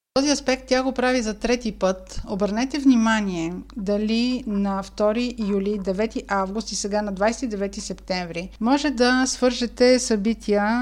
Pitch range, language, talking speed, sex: 200-235 Hz, Bulgarian, 140 wpm, female